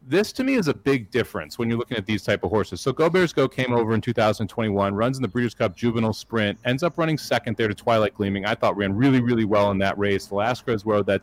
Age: 40-59